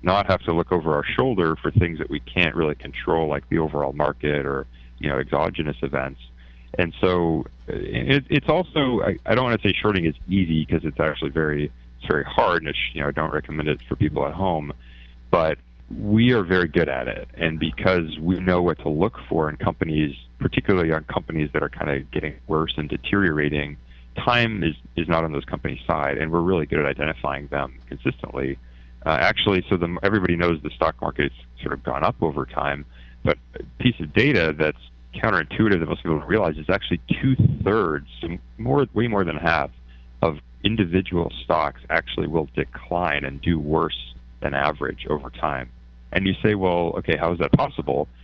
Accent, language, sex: American, English, male